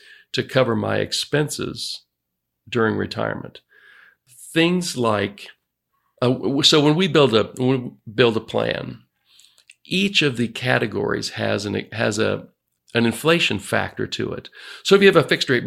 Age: 50-69